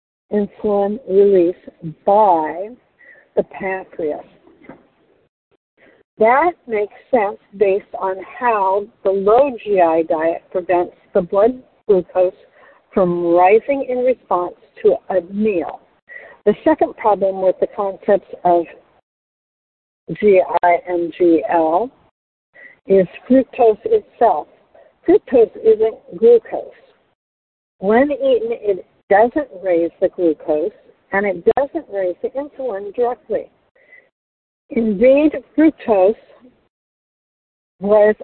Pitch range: 190-275 Hz